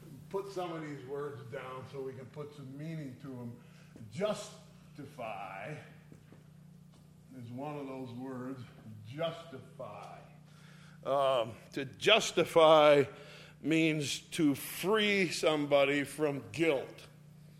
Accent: American